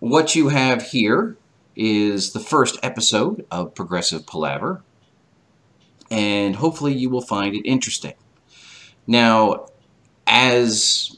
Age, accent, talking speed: 40-59, American, 105 wpm